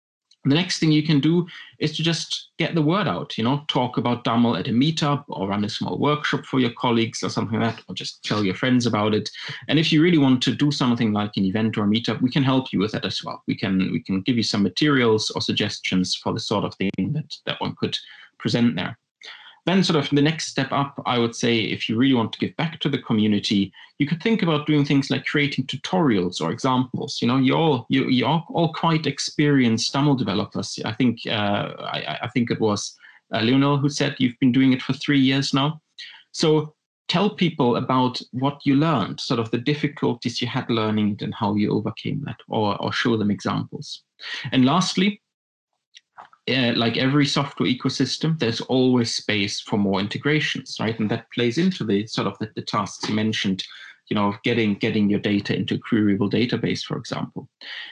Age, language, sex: 30-49, English, male